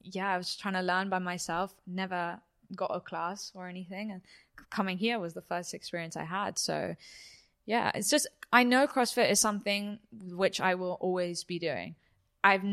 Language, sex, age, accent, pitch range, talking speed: English, female, 10-29, British, 180-205 Hz, 185 wpm